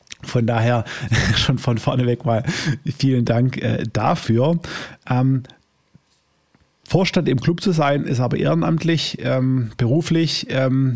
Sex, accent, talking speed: male, German, 125 wpm